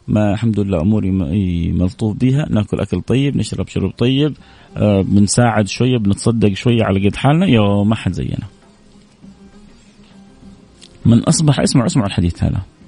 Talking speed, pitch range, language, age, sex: 135 wpm, 100-125 Hz, Arabic, 30-49, male